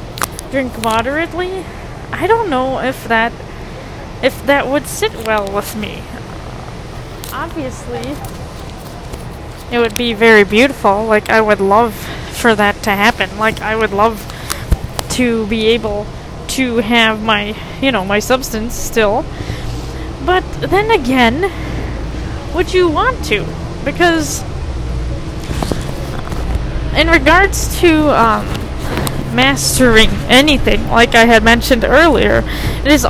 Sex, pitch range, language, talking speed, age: female, 220-275 Hz, English, 115 wpm, 20-39